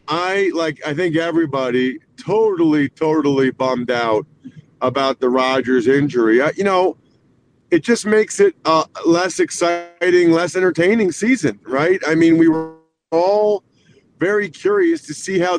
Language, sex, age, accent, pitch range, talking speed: English, male, 50-69, American, 145-180 Hz, 145 wpm